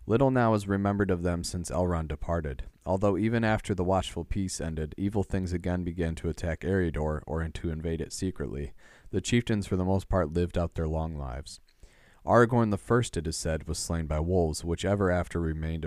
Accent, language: American, English